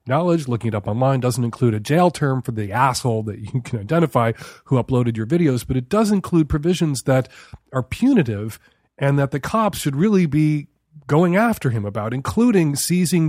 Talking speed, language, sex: 190 wpm, English, male